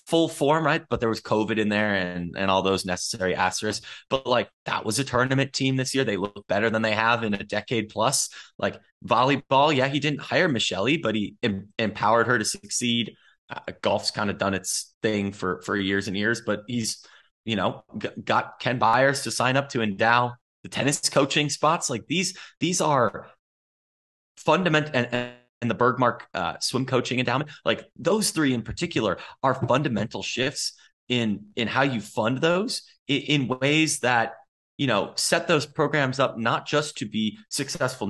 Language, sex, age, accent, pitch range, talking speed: English, male, 20-39, American, 105-140 Hz, 185 wpm